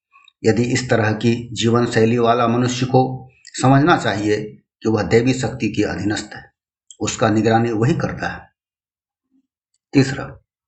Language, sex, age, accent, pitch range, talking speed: Hindi, male, 60-79, native, 105-130 Hz, 135 wpm